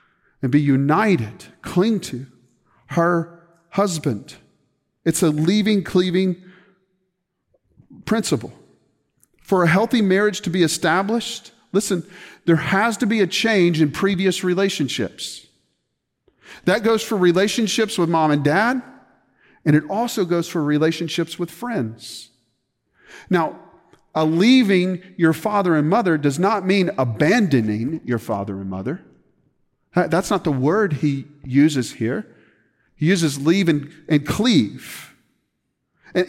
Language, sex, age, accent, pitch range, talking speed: English, male, 40-59, American, 145-190 Hz, 120 wpm